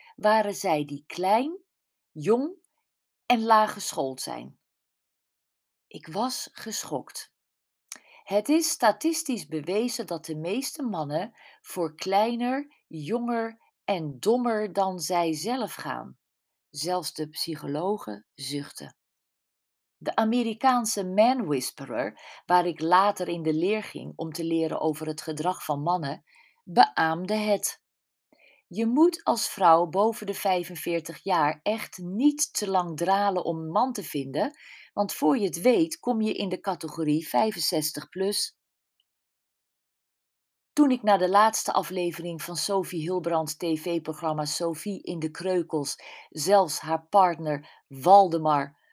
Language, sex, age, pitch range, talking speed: Dutch, female, 40-59, 160-215 Hz, 120 wpm